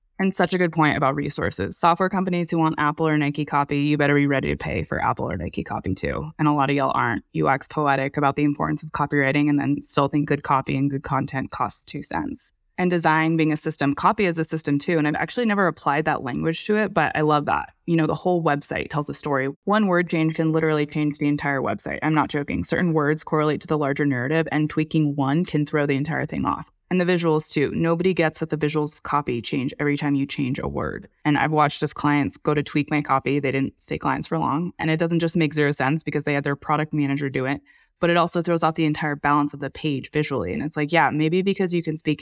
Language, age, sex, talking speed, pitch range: English, 20-39, female, 255 wpm, 145-160 Hz